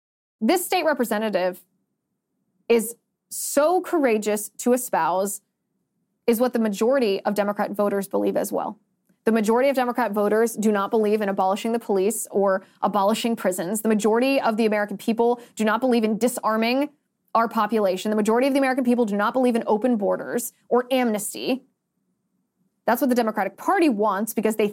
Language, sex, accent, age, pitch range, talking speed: English, female, American, 20-39, 205-255 Hz, 165 wpm